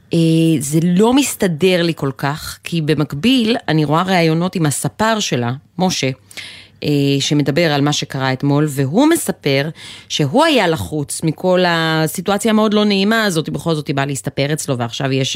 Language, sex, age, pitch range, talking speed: Hebrew, female, 30-49, 135-185 Hz, 150 wpm